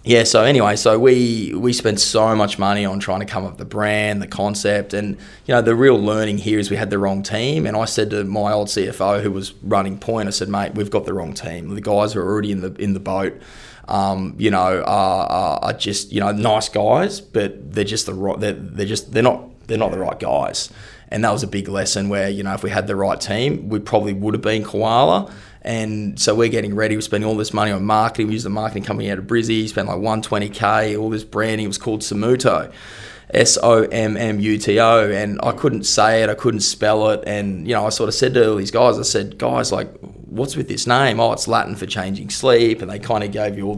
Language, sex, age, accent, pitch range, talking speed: English, male, 20-39, Australian, 100-110 Hz, 250 wpm